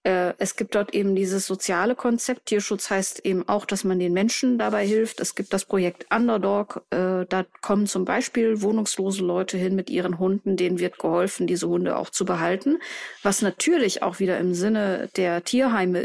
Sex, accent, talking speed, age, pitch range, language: female, German, 180 wpm, 20-39, 180-215 Hz, German